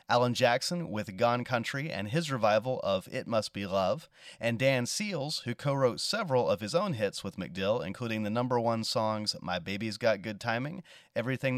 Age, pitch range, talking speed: 30-49, 115-145 Hz, 185 wpm